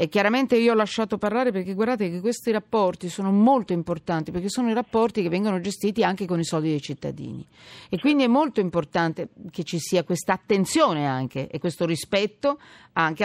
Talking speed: 185 wpm